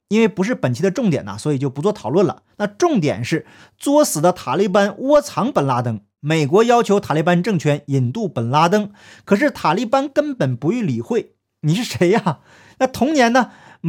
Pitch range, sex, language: 150-225 Hz, male, Chinese